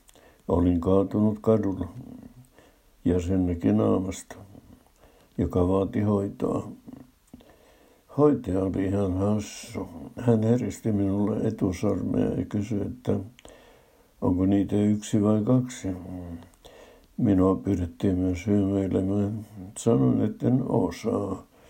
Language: Finnish